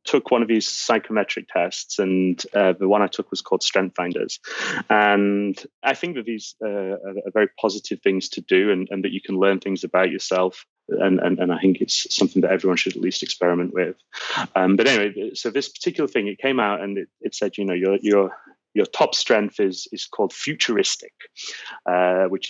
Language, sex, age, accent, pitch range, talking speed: English, male, 30-49, British, 95-120 Hz, 210 wpm